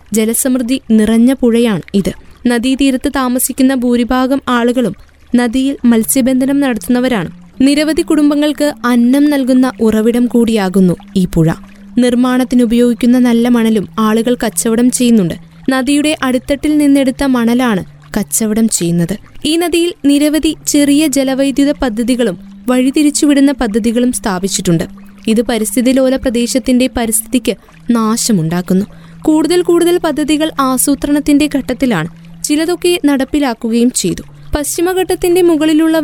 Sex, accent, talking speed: female, native, 90 wpm